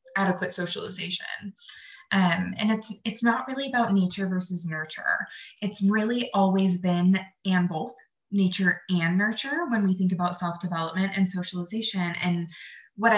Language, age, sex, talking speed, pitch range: English, 20-39, female, 135 wpm, 175-205 Hz